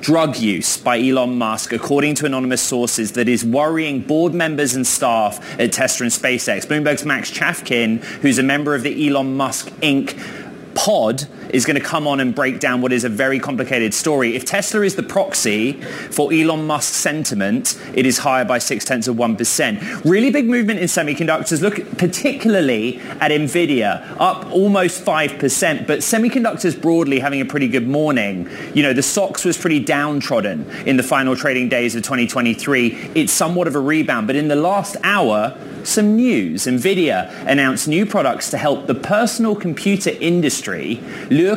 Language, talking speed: English, 170 wpm